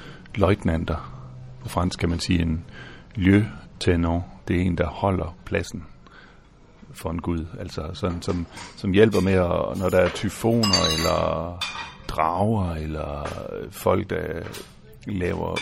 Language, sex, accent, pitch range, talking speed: Danish, male, native, 85-100 Hz, 135 wpm